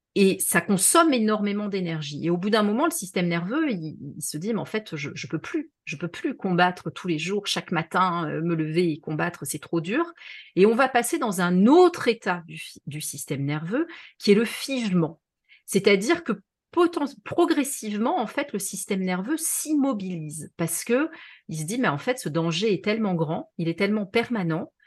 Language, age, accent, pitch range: French, 40-59, French, 165-240 Hz